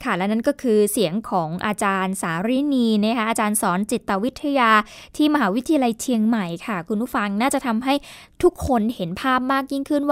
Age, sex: 10-29, female